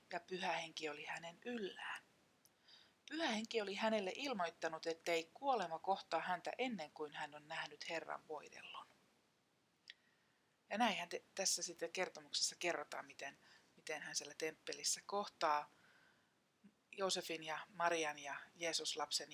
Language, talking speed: Finnish, 125 wpm